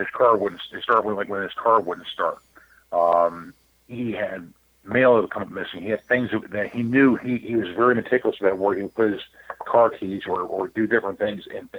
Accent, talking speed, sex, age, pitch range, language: American, 225 wpm, male, 50-69, 100-120 Hz, English